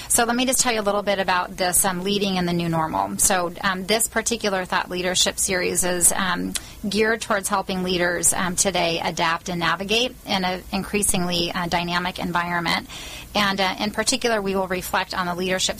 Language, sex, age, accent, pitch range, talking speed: English, female, 30-49, American, 180-205 Hz, 195 wpm